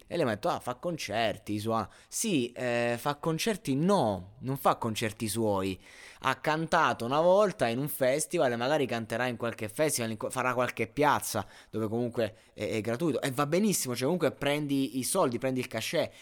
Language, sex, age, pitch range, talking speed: Italian, male, 20-39, 110-135 Hz, 180 wpm